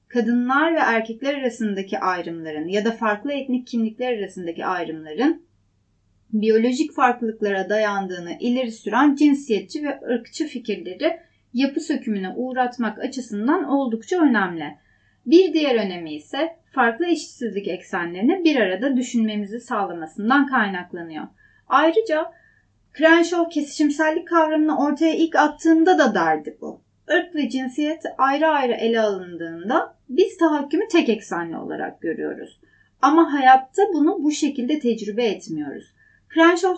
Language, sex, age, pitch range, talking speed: Turkish, female, 30-49, 210-315 Hz, 115 wpm